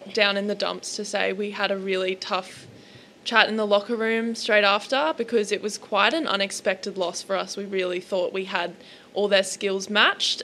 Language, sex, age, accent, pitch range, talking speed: English, female, 20-39, Australian, 190-210 Hz, 205 wpm